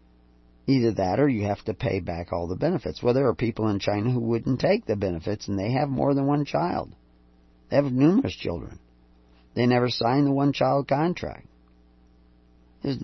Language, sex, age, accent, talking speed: English, male, 40-59, American, 185 wpm